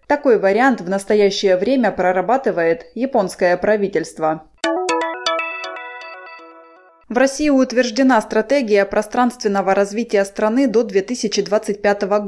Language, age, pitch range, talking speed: Russian, 20-39, 185-245 Hz, 85 wpm